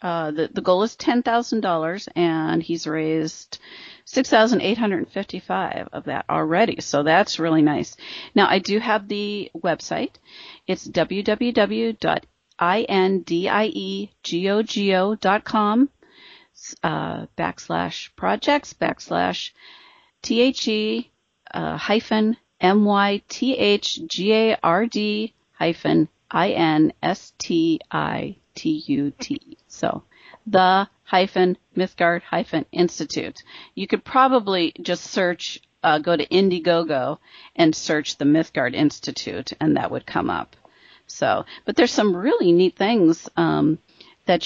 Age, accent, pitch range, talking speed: 40-59, American, 170-235 Hz, 95 wpm